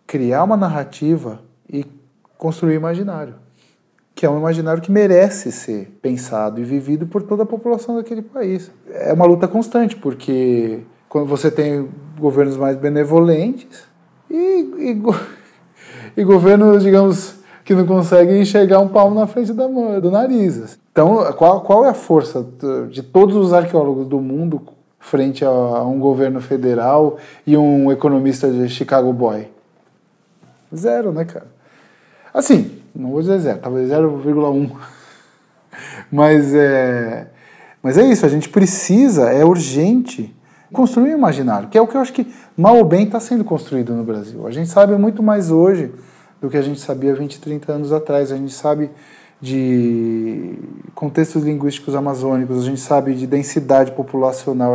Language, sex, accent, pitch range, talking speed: Portuguese, male, Brazilian, 135-190 Hz, 150 wpm